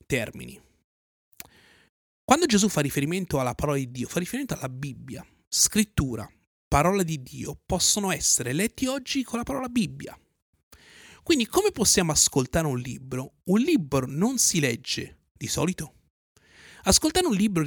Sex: male